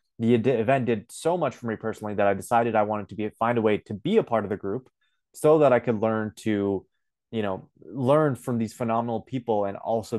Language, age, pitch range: English, 20-39, 105-130 Hz